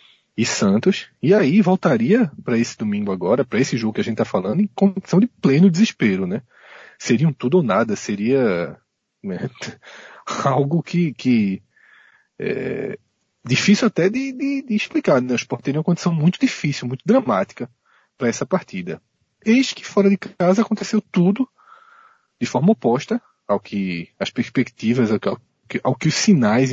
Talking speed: 155 wpm